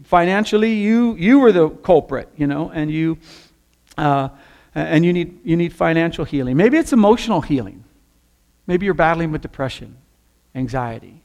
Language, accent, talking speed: English, American, 150 wpm